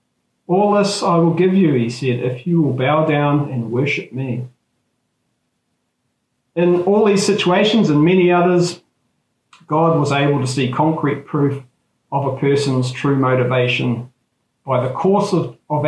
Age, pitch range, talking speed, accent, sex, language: 40-59, 135-170 Hz, 150 wpm, Australian, male, English